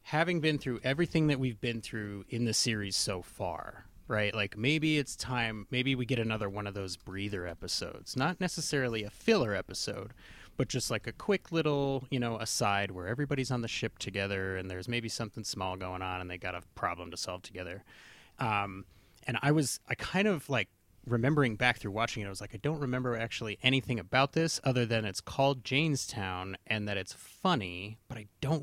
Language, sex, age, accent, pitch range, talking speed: English, male, 30-49, American, 100-135 Hz, 205 wpm